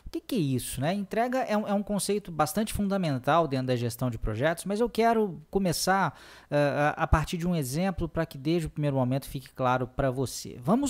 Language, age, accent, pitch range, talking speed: Portuguese, 20-39, Brazilian, 130-180 Hz, 205 wpm